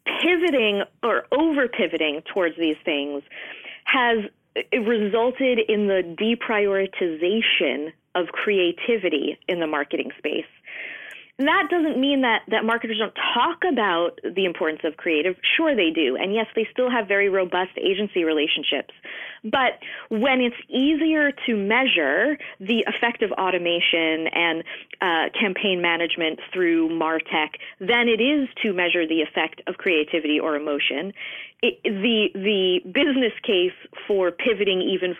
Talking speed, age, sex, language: 135 wpm, 30-49, female, English